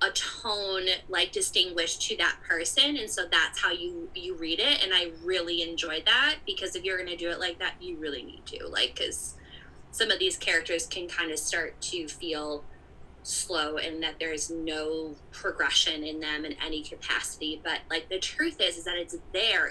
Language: English